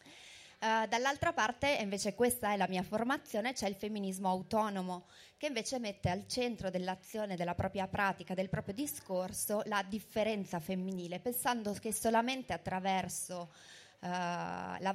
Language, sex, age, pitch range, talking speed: Italian, female, 30-49, 175-205 Hz, 130 wpm